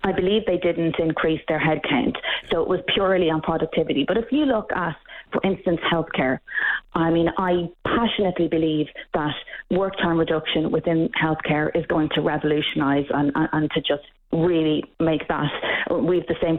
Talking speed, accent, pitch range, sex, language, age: 175 wpm, Irish, 160-190 Hz, female, English, 30-49